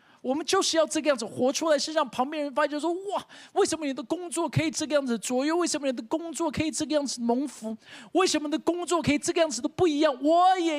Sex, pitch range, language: male, 235-320 Hz, Chinese